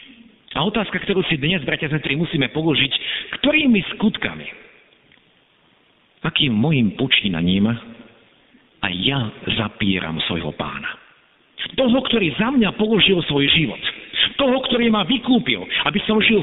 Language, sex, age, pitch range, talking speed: Slovak, male, 50-69, 120-200 Hz, 120 wpm